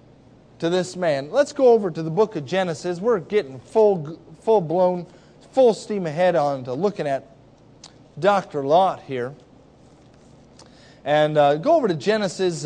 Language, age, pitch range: English, 40-59, 135-195 Hz